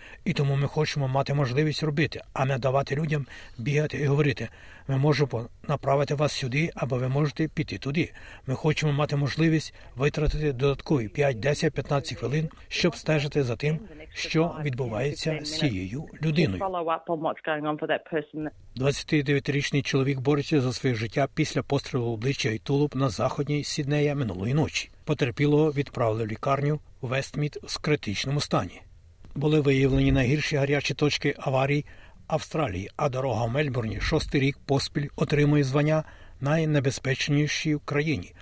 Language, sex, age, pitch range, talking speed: Ukrainian, male, 60-79, 130-150 Hz, 135 wpm